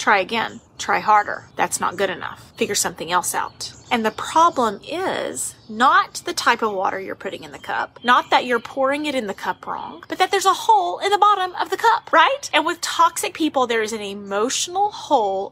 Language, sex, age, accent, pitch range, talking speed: English, female, 30-49, American, 215-300 Hz, 215 wpm